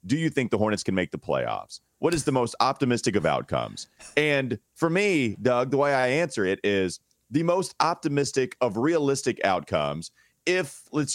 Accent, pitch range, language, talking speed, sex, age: American, 110-145 Hz, English, 185 wpm, male, 30-49